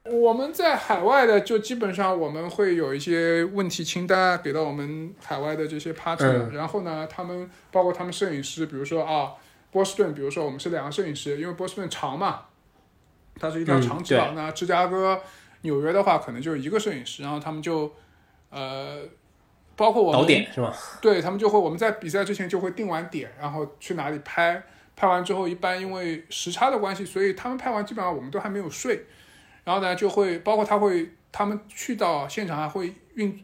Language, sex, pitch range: Chinese, male, 150-200 Hz